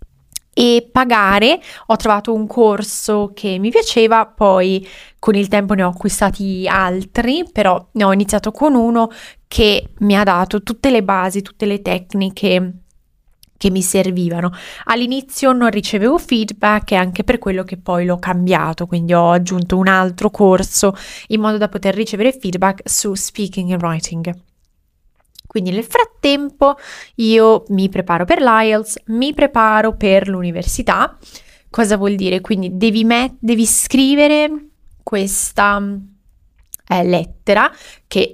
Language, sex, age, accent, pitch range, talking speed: Italian, female, 20-39, native, 185-225 Hz, 135 wpm